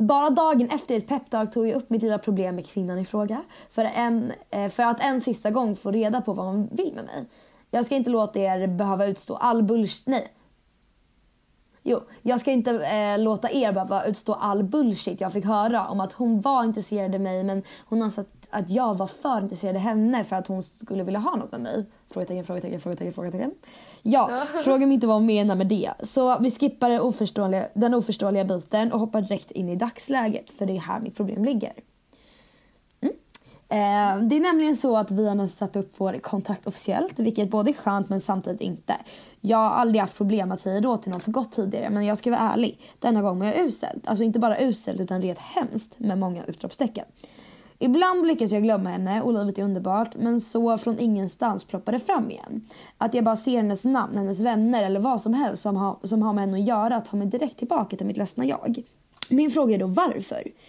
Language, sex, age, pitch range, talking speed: Swedish, female, 20-39, 200-240 Hz, 210 wpm